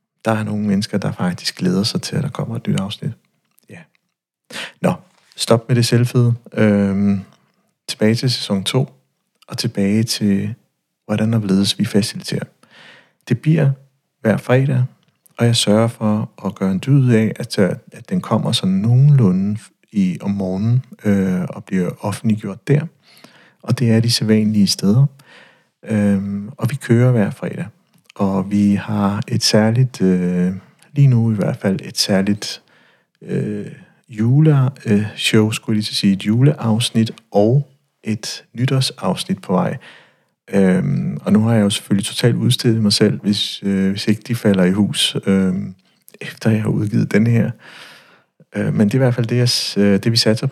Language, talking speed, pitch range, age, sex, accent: Danish, 165 wpm, 105-130 Hz, 60-79, male, native